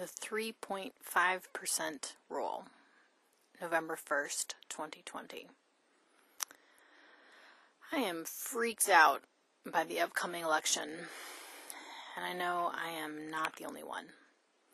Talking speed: 95 wpm